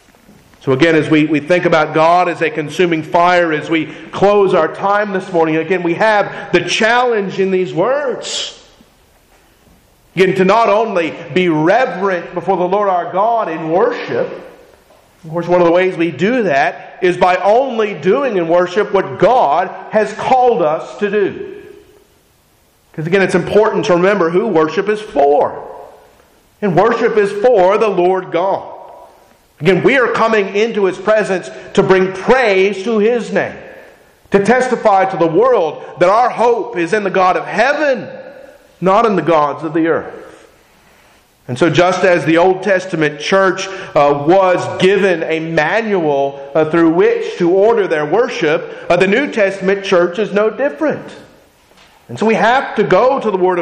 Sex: male